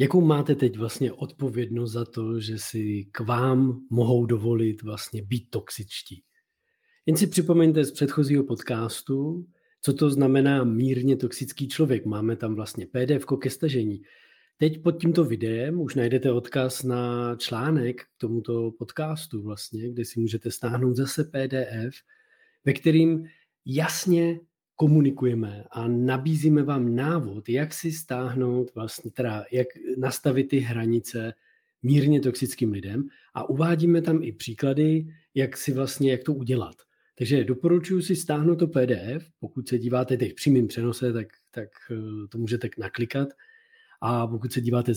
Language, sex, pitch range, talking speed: Czech, male, 120-150 Hz, 140 wpm